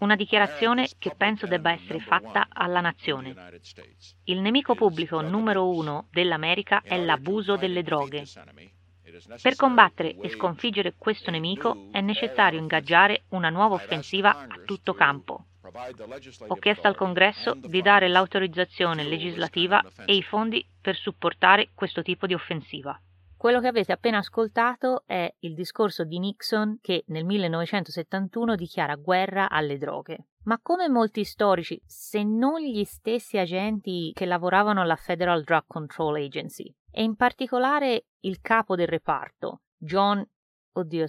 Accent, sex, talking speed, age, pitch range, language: native, female, 135 wpm, 30-49, 160-210 Hz, Italian